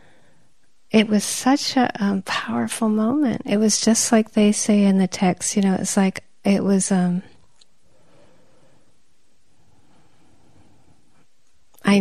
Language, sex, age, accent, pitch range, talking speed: English, female, 40-59, American, 190-225 Hz, 120 wpm